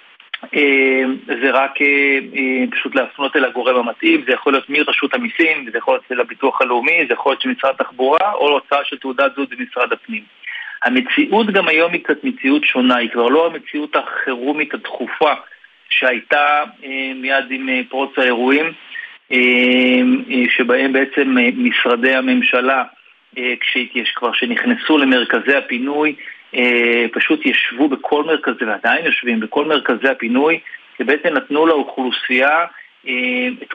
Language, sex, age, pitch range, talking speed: Hebrew, male, 40-59, 130-170 Hz, 125 wpm